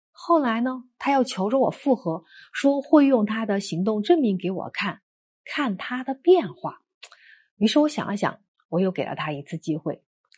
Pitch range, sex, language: 185-280 Hz, female, Chinese